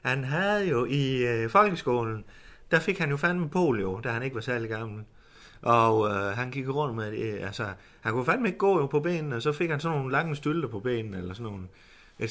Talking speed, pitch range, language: 240 wpm, 115-175 Hz, Danish